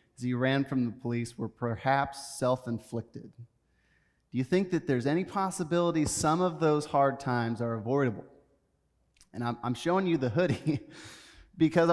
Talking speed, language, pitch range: 150 wpm, English, 120-160 Hz